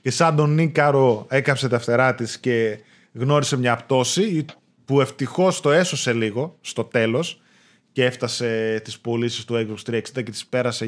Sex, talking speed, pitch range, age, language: male, 160 wpm, 125-175 Hz, 20-39, Greek